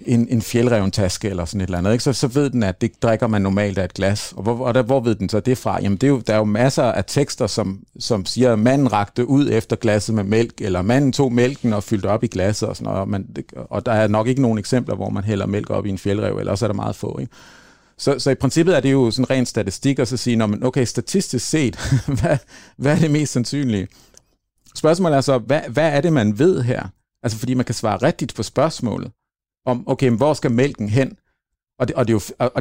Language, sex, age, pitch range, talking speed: Danish, male, 50-69, 105-135 Hz, 245 wpm